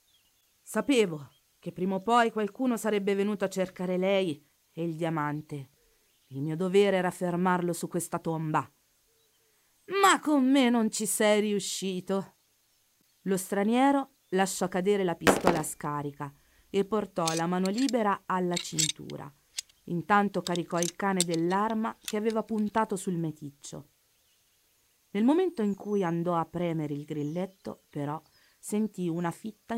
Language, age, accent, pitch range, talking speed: Italian, 40-59, native, 160-210 Hz, 135 wpm